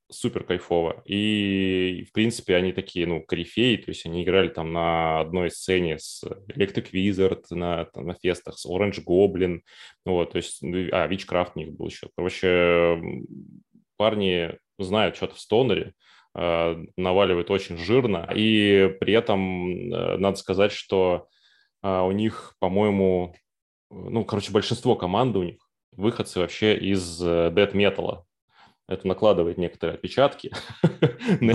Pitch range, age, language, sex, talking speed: 90-105 Hz, 20-39, Russian, male, 130 wpm